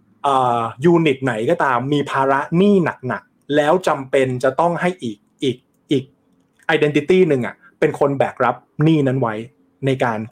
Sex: male